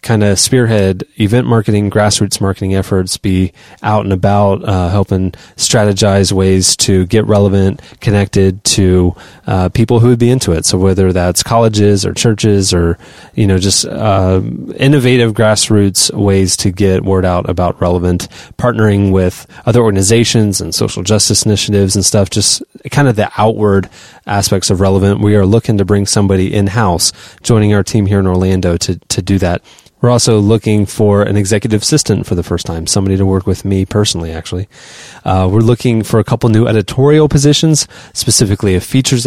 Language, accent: English, American